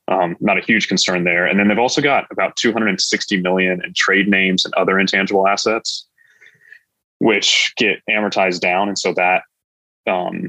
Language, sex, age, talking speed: English, male, 20-39, 165 wpm